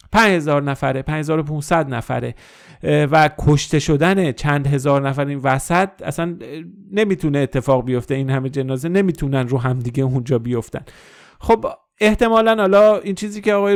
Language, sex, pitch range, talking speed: Persian, male, 130-170 Hz, 135 wpm